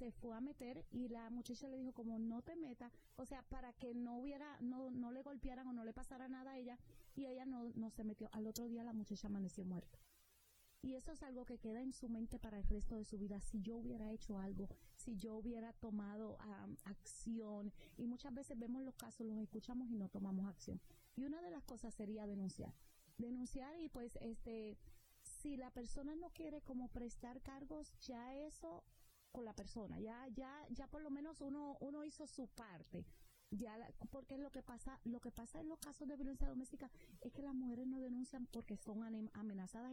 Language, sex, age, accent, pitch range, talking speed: Spanish, female, 30-49, American, 215-260 Hz, 210 wpm